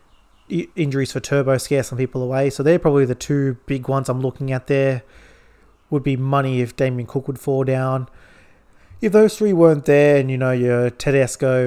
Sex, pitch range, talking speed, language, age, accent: male, 130-145 Hz, 190 wpm, English, 20-39, Australian